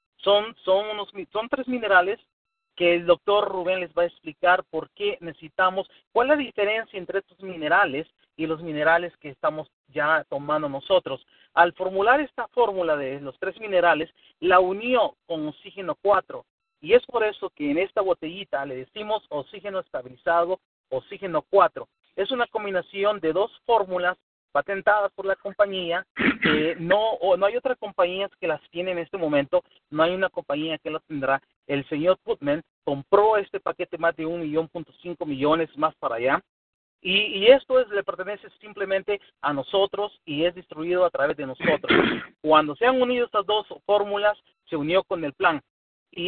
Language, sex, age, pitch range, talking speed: English, male, 40-59, 165-210 Hz, 170 wpm